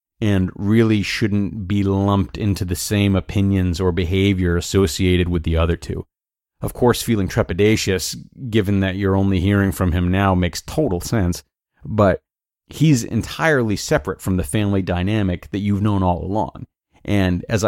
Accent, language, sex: American, English, male